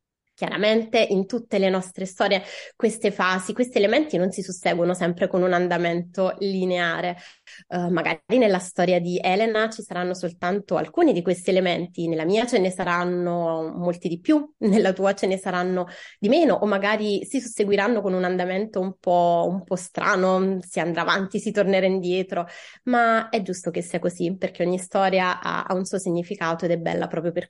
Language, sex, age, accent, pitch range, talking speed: Italian, female, 20-39, native, 180-215 Hz, 180 wpm